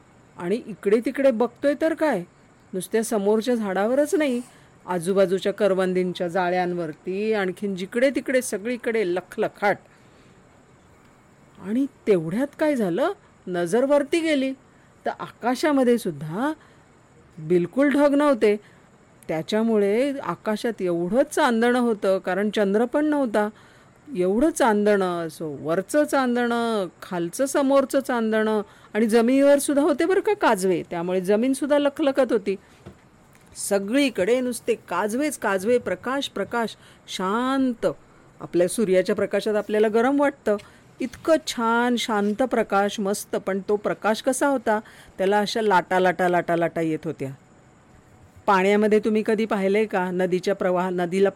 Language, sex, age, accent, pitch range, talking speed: Marathi, female, 40-59, native, 185-265 Hz, 110 wpm